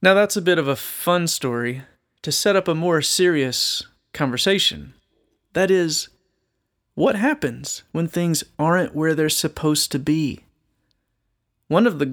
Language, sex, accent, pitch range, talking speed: English, male, American, 130-175 Hz, 150 wpm